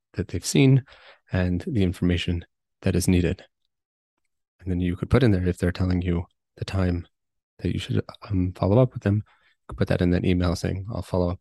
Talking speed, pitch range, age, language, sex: 210 wpm, 90-100 Hz, 20-39, English, male